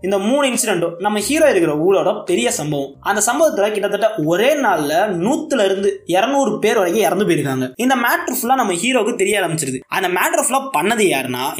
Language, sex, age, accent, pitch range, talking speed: Tamil, male, 20-39, native, 160-230 Hz, 140 wpm